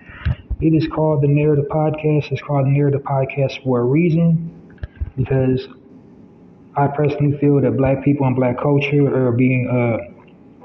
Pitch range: 135-150 Hz